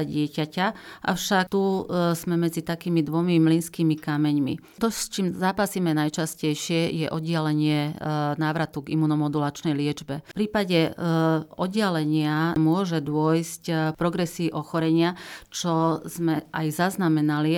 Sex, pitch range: female, 155-170 Hz